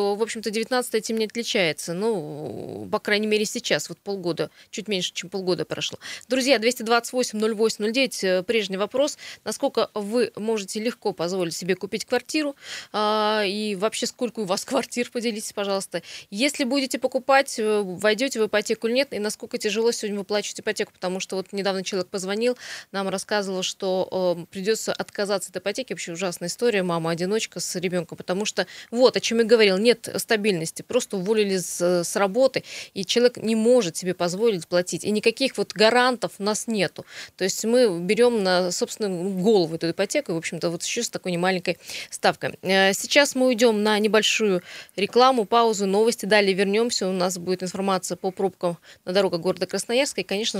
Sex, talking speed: female, 165 wpm